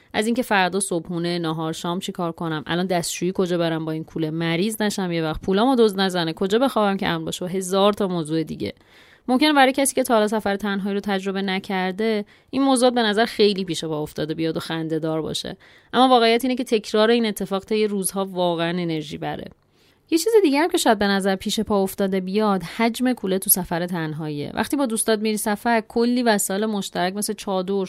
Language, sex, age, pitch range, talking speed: Persian, female, 30-49, 180-225 Hz, 200 wpm